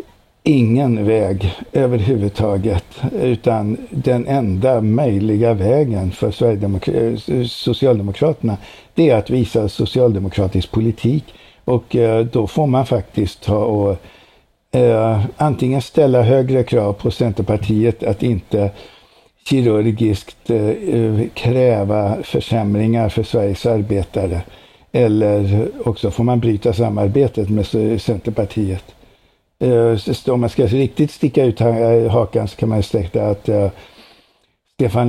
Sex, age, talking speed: male, 60-79, 105 wpm